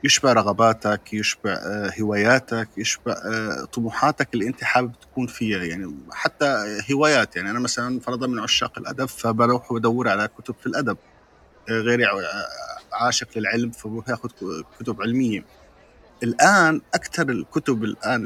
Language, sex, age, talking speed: Arabic, male, 30-49, 125 wpm